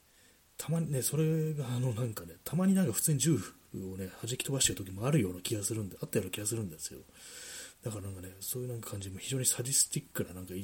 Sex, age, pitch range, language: male, 30-49, 90-125 Hz, Japanese